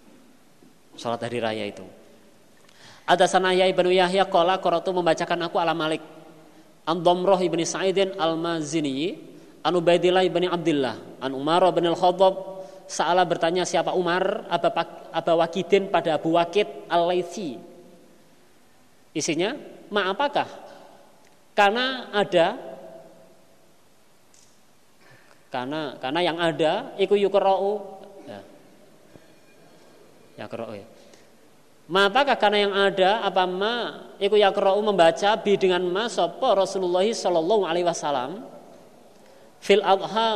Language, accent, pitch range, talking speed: Indonesian, native, 160-195 Hz, 95 wpm